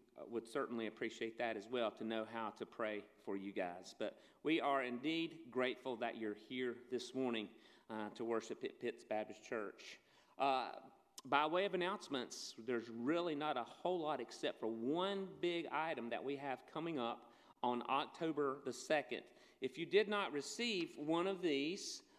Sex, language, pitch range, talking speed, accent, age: male, English, 125-190 Hz, 175 wpm, American, 40-59